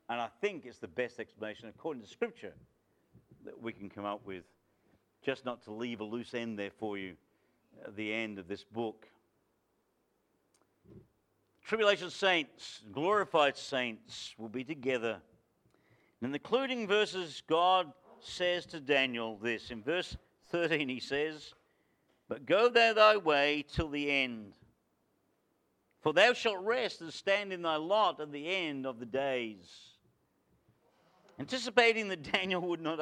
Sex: male